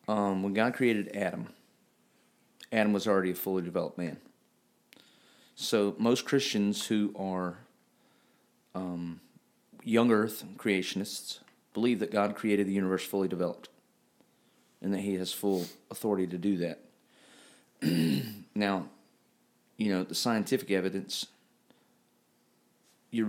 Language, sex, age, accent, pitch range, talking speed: English, male, 40-59, American, 90-105 Hz, 115 wpm